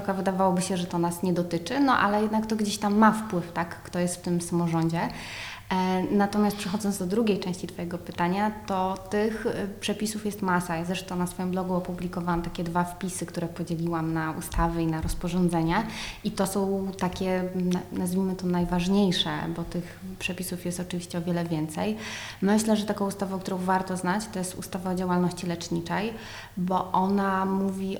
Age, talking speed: 20-39, 170 wpm